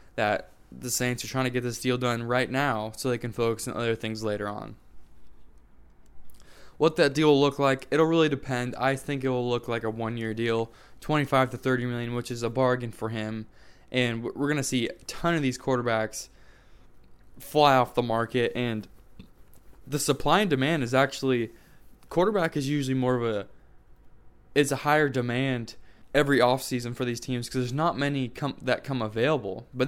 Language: English